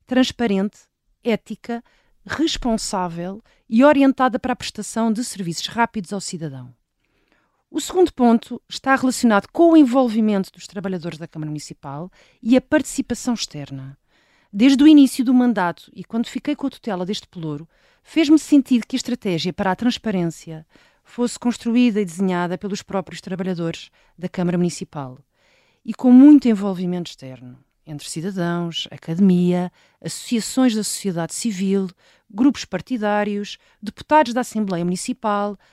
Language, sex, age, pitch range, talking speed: Portuguese, female, 40-59, 175-245 Hz, 135 wpm